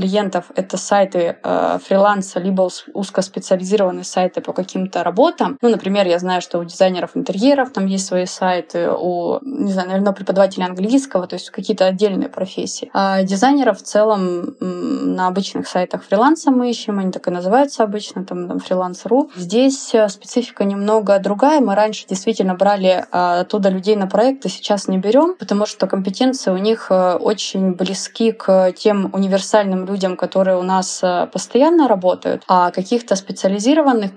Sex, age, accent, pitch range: female, 20-39, native, 185-220 Hz